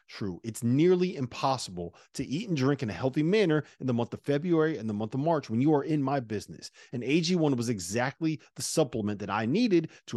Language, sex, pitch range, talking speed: English, male, 115-170 Hz, 225 wpm